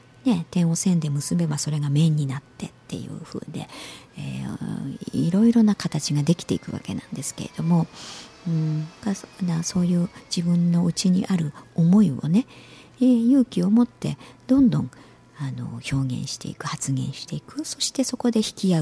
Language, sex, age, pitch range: Japanese, male, 50-69, 135-195 Hz